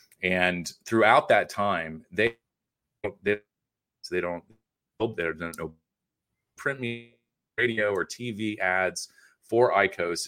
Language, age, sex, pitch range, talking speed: English, 30-49, male, 90-120 Hz, 105 wpm